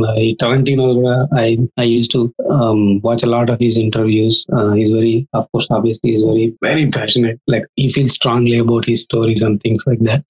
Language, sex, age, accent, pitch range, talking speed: Telugu, male, 20-39, native, 115-130 Hz, 205 wpm